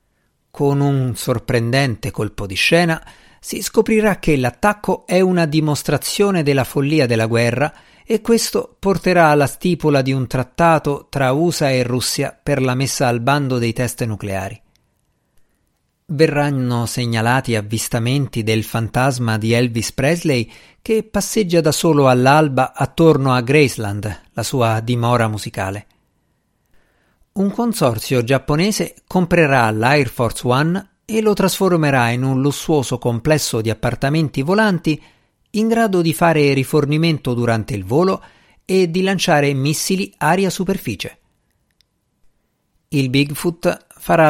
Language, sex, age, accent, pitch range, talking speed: Italian, male, 50-69, native, 120-170 Hz, 125 wpm